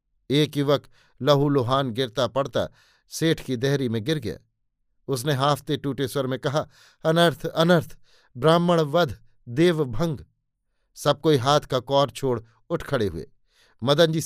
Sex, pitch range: male, 130-165 Hz